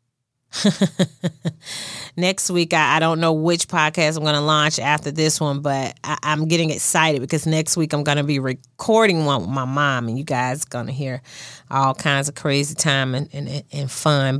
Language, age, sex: English, 30-49, female